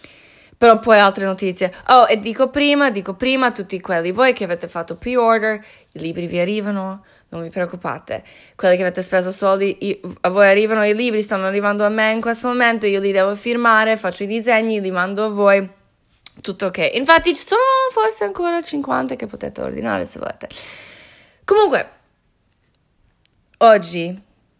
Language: Italian